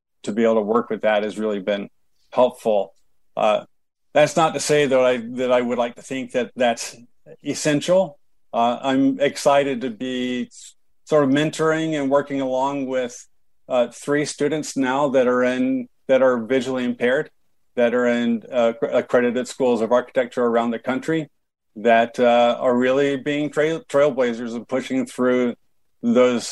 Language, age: English, 50-69